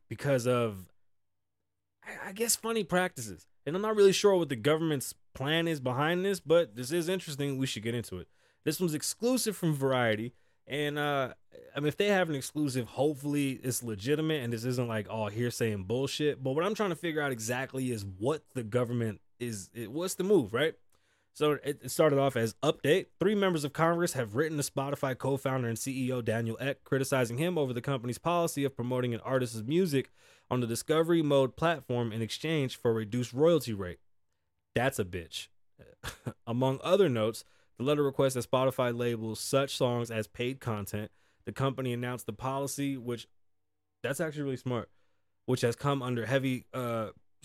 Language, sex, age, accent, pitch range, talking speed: English, male, 20-39, American, 115-150 Hz, 180 wpm